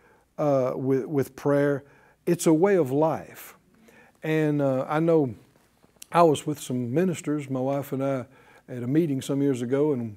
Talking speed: 170 wpm